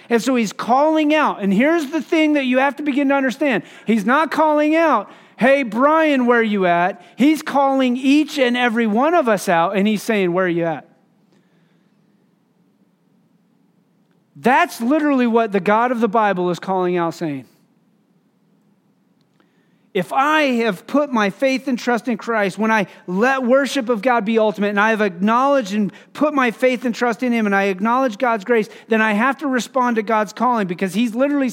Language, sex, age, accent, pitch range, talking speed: English, male, 40-59, American, 195-260 Hz, 190 wpm